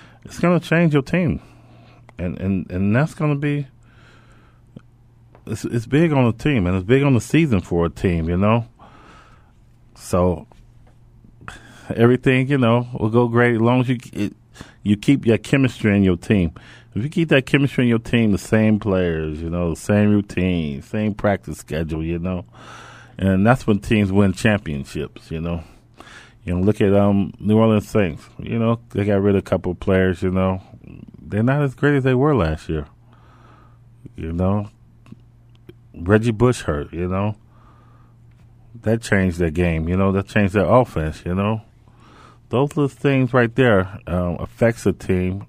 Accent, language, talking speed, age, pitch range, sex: American, English, 180 wpm, 30-49, 95-120 Hz, male